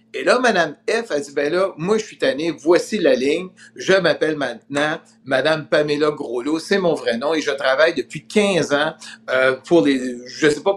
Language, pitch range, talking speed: French, 150-235 Hz, 205 wpm